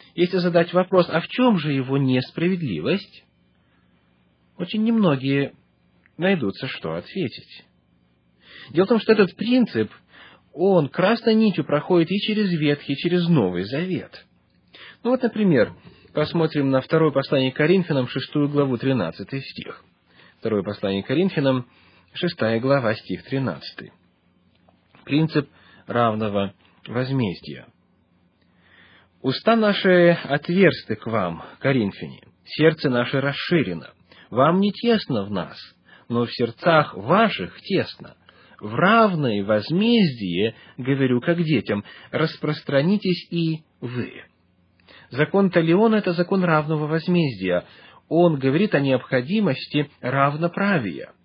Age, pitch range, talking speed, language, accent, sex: 30-49, 110-175 Hz, 110 wpm, Russian, native, male